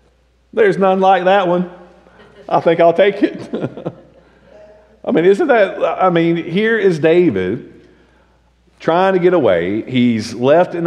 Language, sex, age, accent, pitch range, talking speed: English, male, 40-59, American, 110-155 Hz, 145 wpm